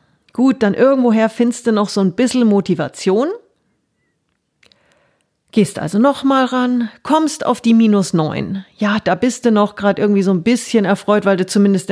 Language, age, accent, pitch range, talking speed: German, 40-59, German, 185-230 Hz, 165 wpm